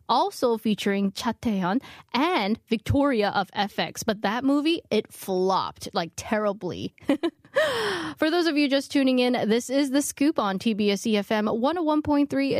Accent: American